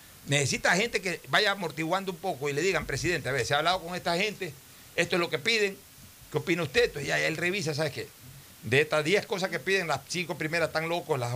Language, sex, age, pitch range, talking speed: Spanish, male, 60-79, 155-220 Hz, 245 wpm